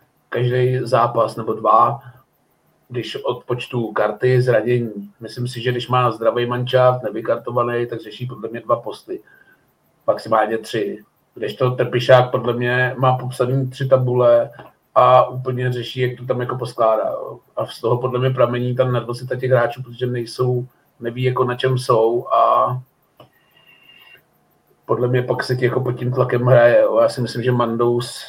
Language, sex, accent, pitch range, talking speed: Czech, male, native, 120-125 Hz, 155 wpm